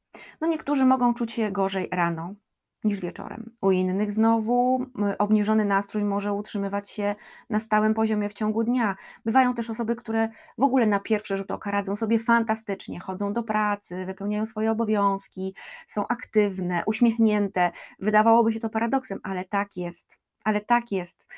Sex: female